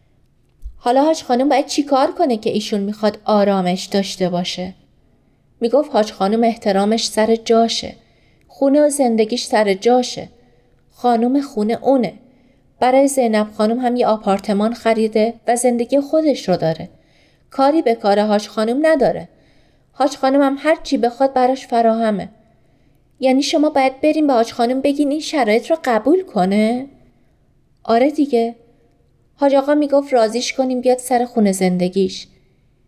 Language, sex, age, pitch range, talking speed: Persian, female, 30-49, 210-275 Hz, 140 wpm